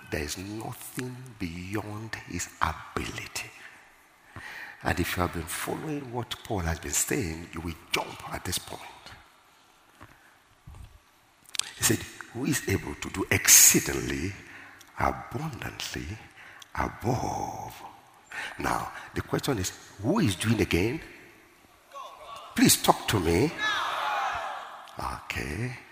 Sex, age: male, 60-79